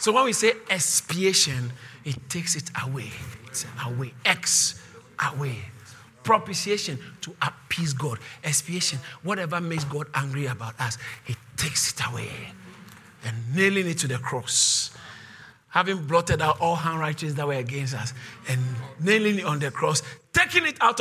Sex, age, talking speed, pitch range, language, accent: male, 50-69, 150 wpm, 130-215 Hz, English, Nigerian